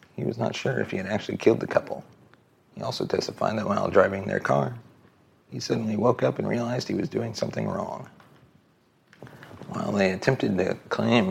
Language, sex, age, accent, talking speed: English, male, 40-59, American, 185 wpm